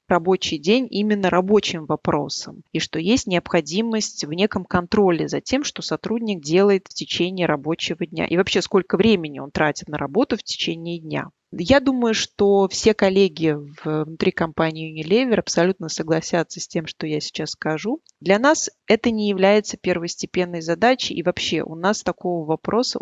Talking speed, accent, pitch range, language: 160 wpm, native, 165-205 Hz, Russian